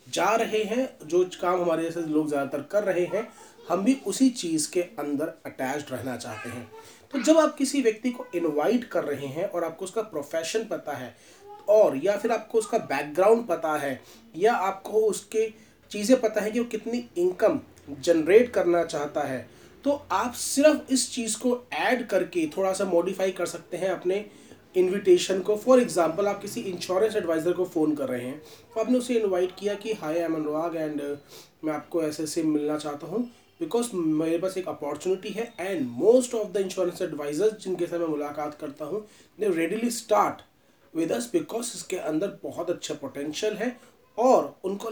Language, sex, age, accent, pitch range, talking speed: Hindi, male, 30-49, native, 165-230 Hz, 180 wpm